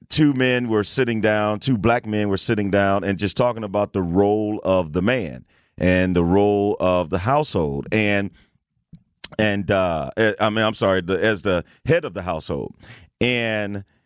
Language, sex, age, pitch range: English, male, 40-59, 95-115 Hz